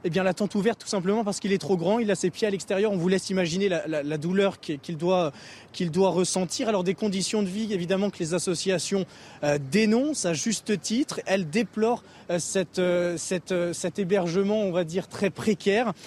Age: 20-39